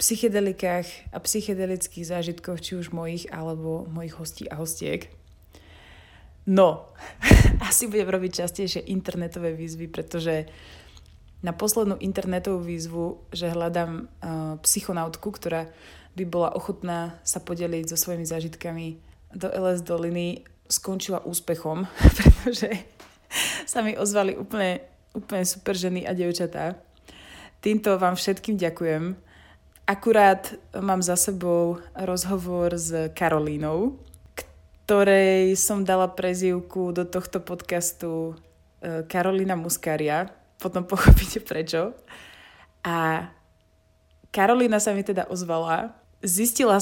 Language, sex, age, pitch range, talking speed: Slovak, female, 20-39, 165-190 Hz, 105 wpm